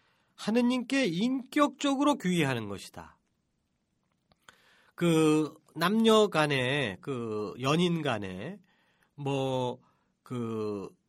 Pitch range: 145-230 Hz